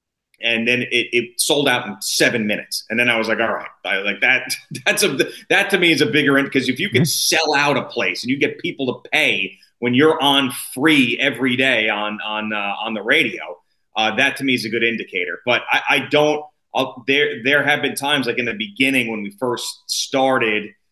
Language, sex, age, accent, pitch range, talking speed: English, male, 30-49, American, 115-150 Hz, 225 wpm